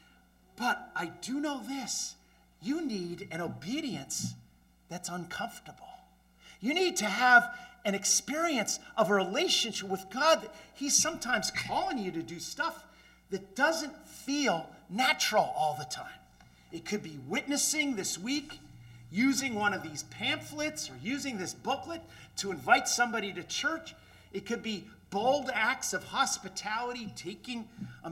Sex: male